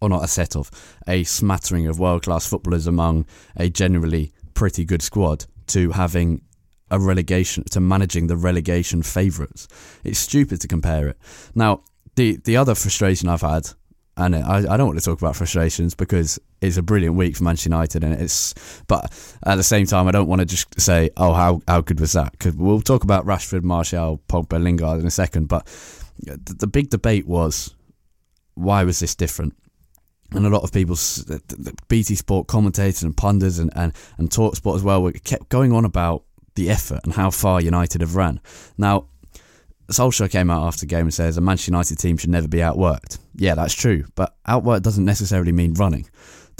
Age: 20-39